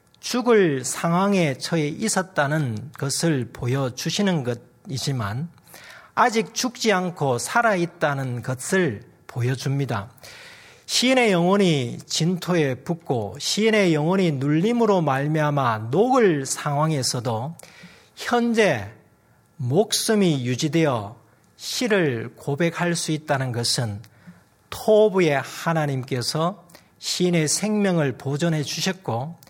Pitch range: 125-190 Hz